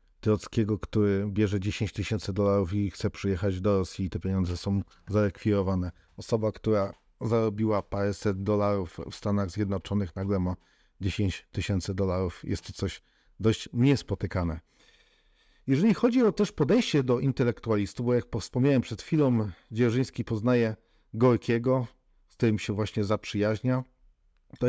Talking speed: 135 wpm